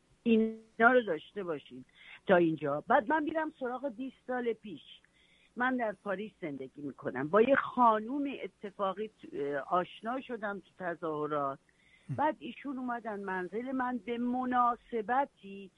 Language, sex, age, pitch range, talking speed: Persian, female, 50-69, 185-255 Hz, 120 wpm